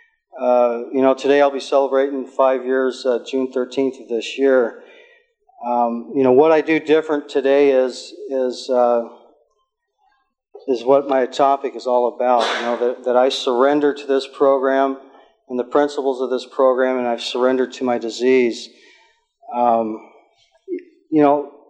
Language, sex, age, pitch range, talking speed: English, male, 40-59, 125-150 Hz, 160 wpm